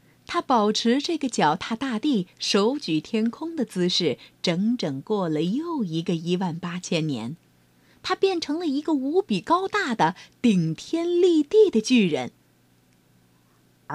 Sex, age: female, 30-49